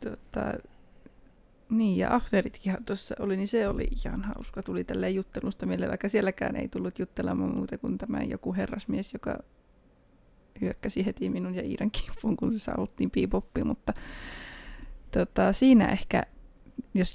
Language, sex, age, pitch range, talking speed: Finnish, female, 20-39, 170-205 Hz, 140 wpm